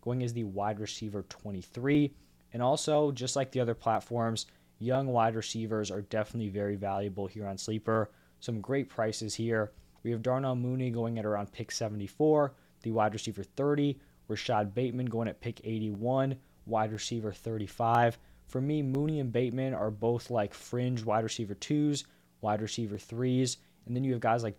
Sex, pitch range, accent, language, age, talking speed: male, 100-120 Hz, American, English, 20-39, 170 wpm